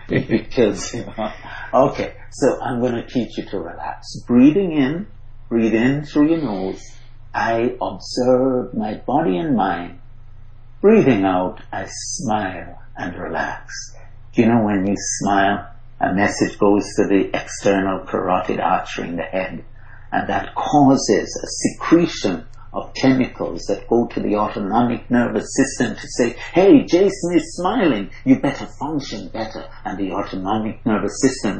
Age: 60-79